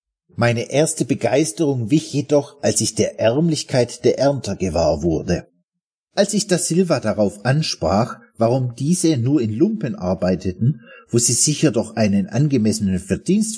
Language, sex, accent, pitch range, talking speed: German, male, German, 105-155 Hz, 140 wpm